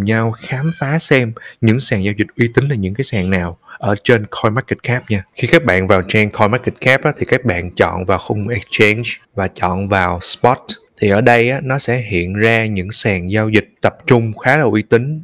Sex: male